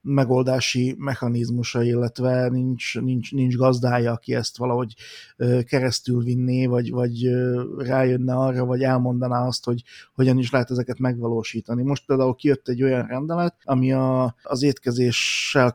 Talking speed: 135 wpm